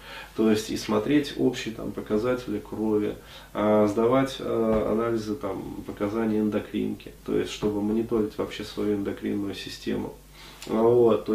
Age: 20-39